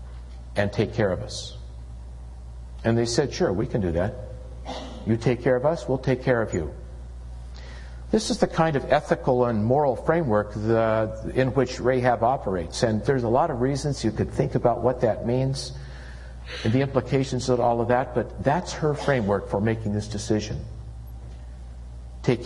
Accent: American